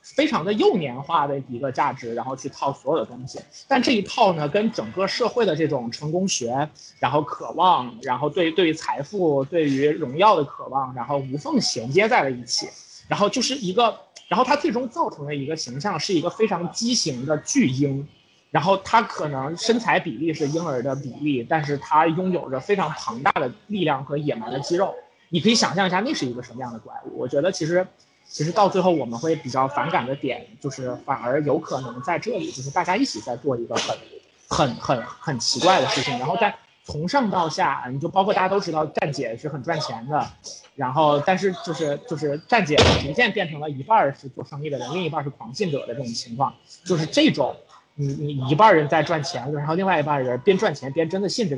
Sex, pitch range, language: male, 135-185 Hz, Chinese